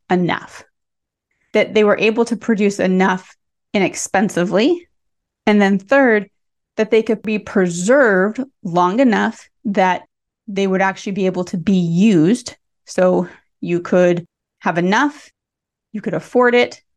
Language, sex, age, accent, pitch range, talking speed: English, female, 20-39, American, 185-230 Hz, 130 wpm